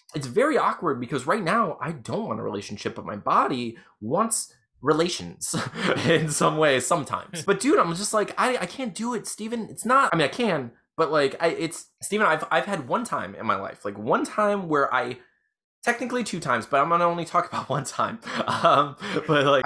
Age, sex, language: 20-39, male, English